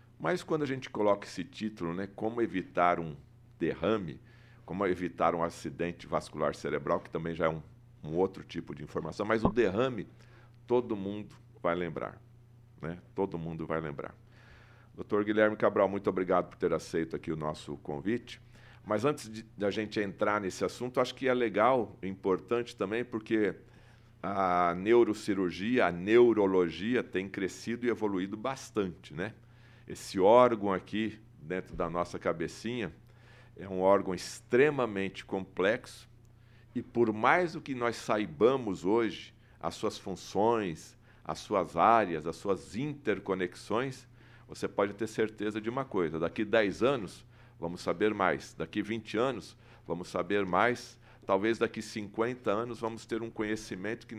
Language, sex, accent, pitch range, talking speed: Portuguese, male, Brazilian, 95-120 Hz, 150 wpm